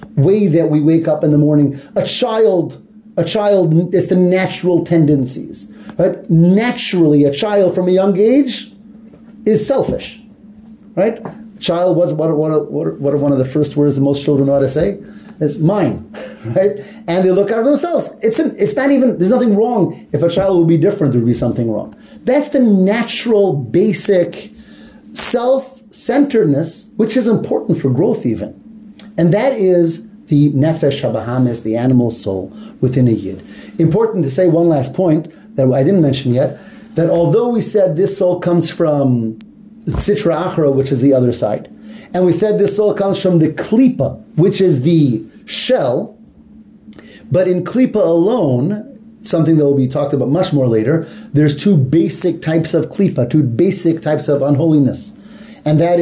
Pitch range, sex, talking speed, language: 150-215 Hz, male, 175 wpm, English